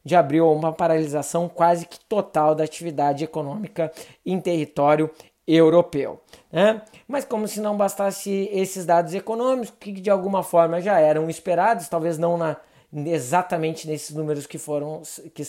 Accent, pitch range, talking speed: Brazilian, 160-200 Hz, 145 wpm